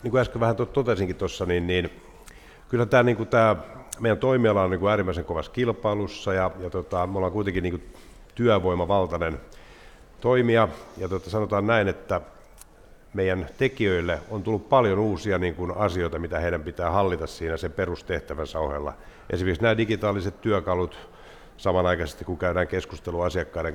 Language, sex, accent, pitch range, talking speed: Finnish, male, native, 85-105 Hz, 150 wpm